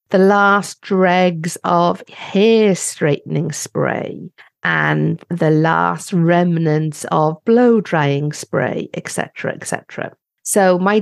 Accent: British